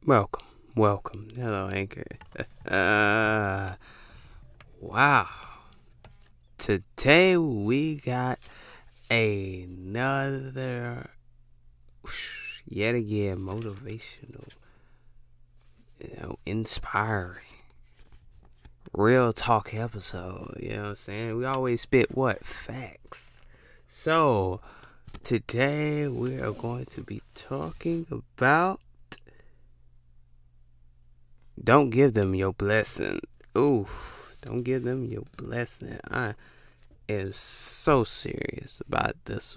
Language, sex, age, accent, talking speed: English, male, 20-39, American, 85 wpm